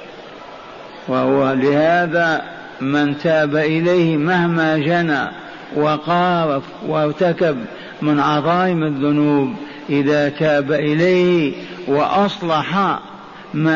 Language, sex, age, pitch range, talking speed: Arabic, male, 50-69, 145-175 Hz, 75 wpm